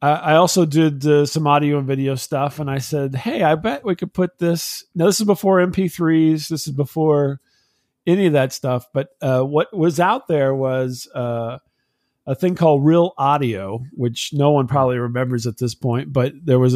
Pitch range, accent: 125-160 Hz, American